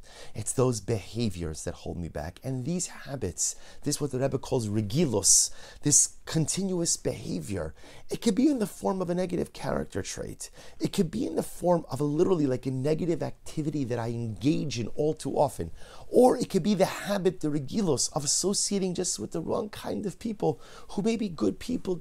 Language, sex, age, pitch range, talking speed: English, male, 30-49, 105-165 Hz, 195 wpm